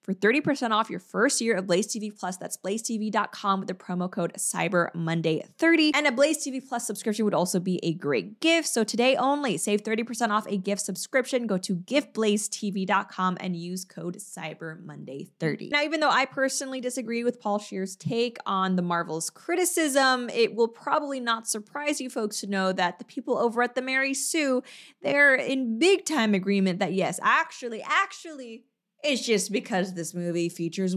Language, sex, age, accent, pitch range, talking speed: English, female, 20-39, American, 190-260 Hz, 175 wpm